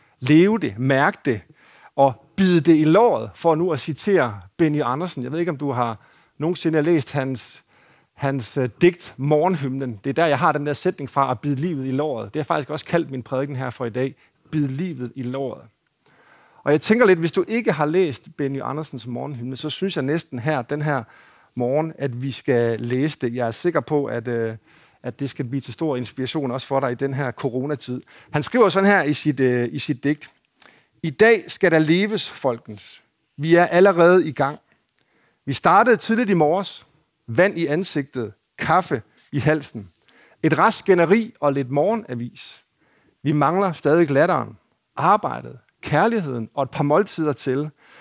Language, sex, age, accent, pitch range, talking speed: Danish, male, 50-69, native, 130-170 Hz, 185 wpm